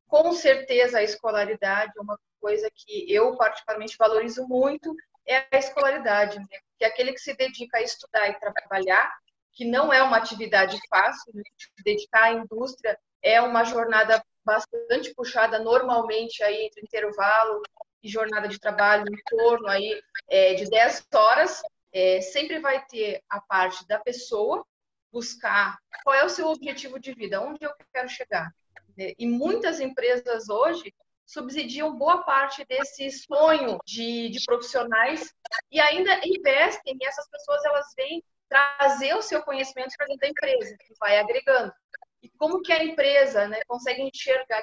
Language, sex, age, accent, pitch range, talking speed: Portuguese, female, 30-49, Brazilian, 220-295 Hz, 150 wpm